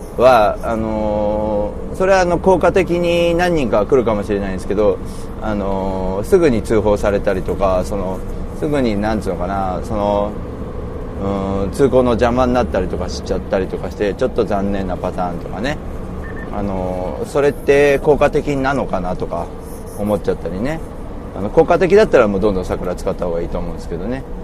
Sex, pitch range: male, 90-125 Hz